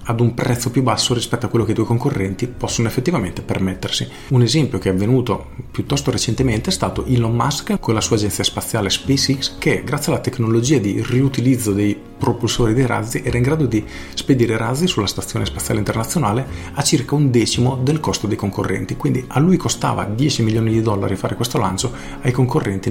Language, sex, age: Italian, male, 40-59